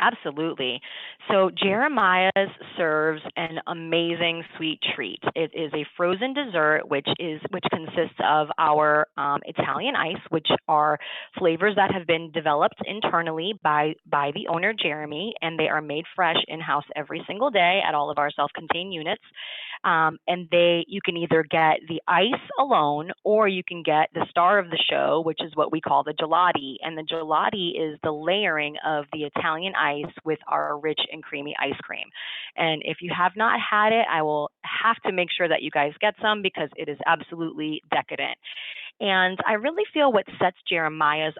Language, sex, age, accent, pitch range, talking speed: English, female, 30-49, American, 155-190 Hz, 180 wpm